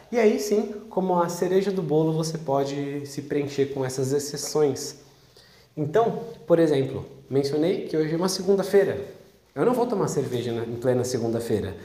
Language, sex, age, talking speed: Portuguese, male, 20-39, 160 wpm